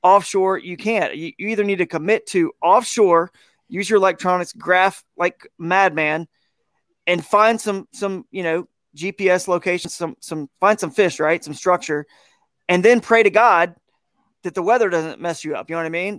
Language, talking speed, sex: English, 180 wpm, male